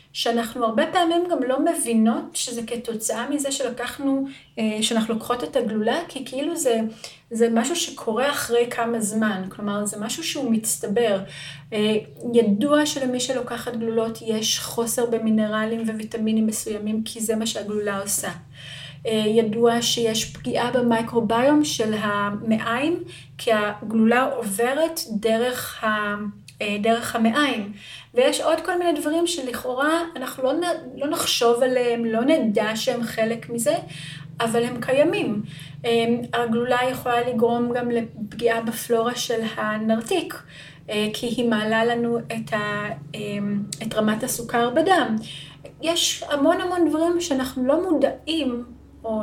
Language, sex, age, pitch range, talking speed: Hebrew, female, 30-49, 220-265 Hz, 120 wpm